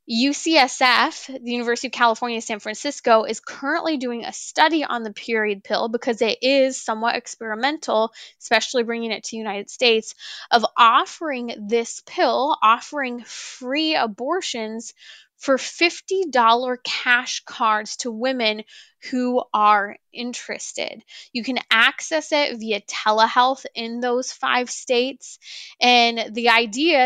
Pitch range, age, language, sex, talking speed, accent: 225-285 Hz, 10-29, English, female, 125 wpm, American